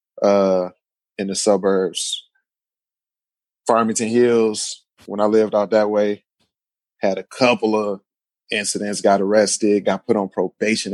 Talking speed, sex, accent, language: 125 wpm, male, American, English